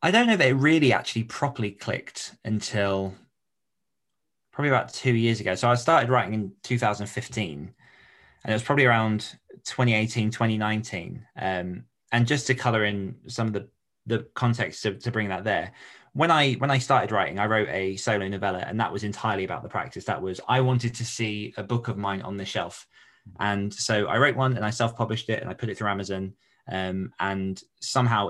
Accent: British